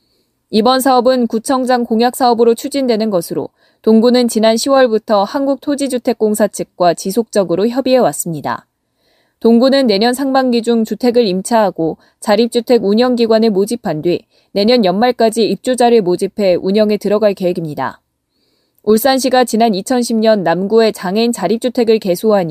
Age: 20-39